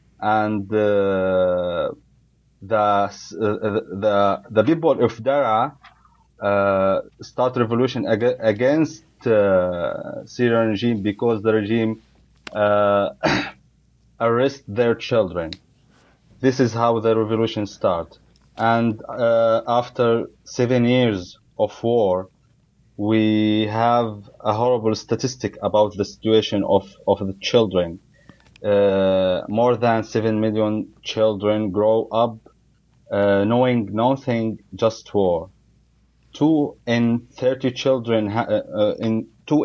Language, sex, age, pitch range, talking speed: English, male, 30-49, 105-120 Hz, 105 wpm